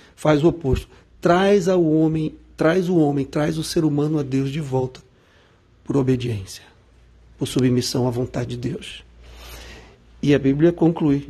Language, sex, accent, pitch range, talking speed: Portuguese, male, Brazilian, 130-155 Hz, 155 wpm